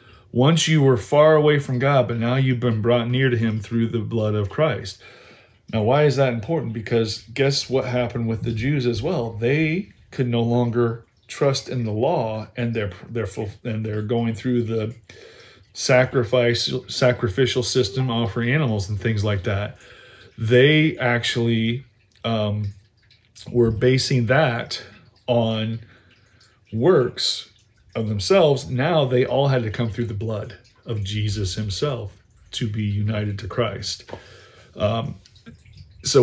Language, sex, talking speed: English, male, 145 wpm